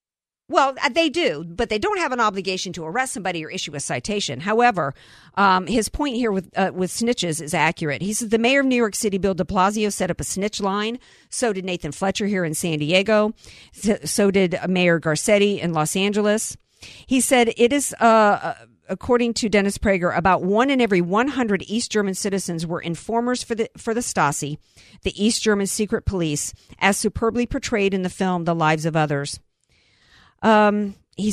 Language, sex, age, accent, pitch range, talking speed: English, female, 50-69, American, 170-215 Hz, 190 wpm